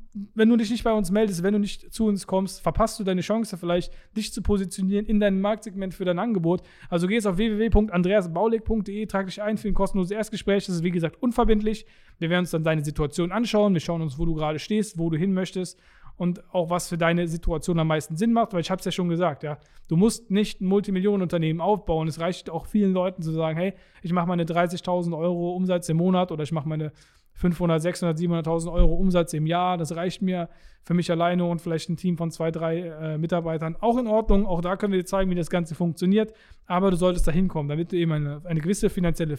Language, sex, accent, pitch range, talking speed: German, male, German, 165-195 Hz, 230 wpm